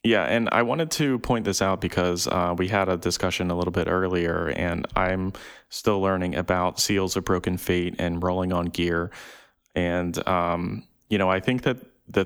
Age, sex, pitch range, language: 20-39, male, 85-100 Hz, English